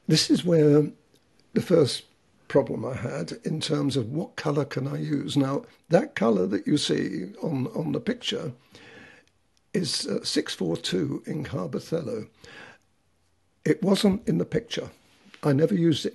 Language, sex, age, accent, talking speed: English, male, 60-79, British, 150 wpm